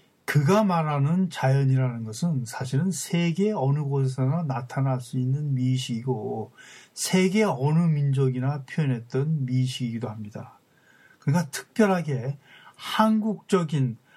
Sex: male